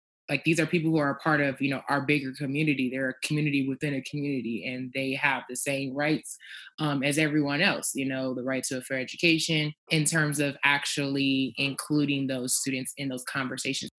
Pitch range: 130-145 Hz